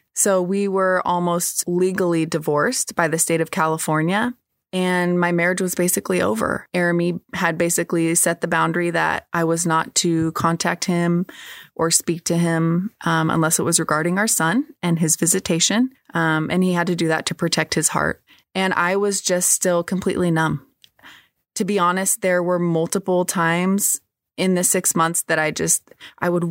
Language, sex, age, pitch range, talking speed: English, female, 20-39, 165-190 Hz, 175 wpm